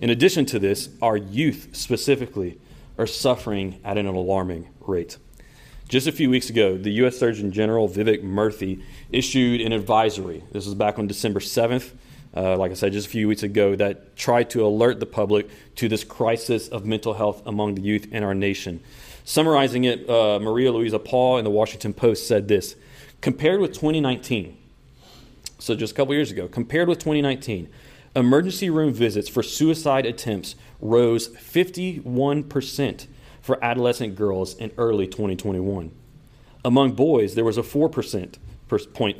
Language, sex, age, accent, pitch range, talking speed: English, male, 40-59, American, 105-130 Hz, 160 wpm